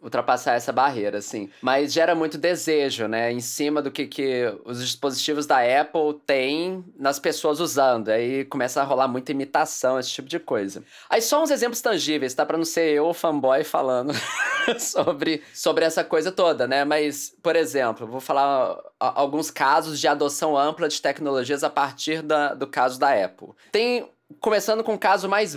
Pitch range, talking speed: 135-180 Hz, 175 wpm